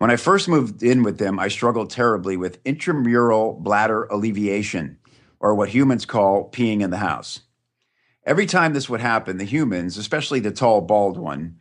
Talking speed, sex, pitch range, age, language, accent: 175 wpm, male, 100-125 Hz, 50-69, English, American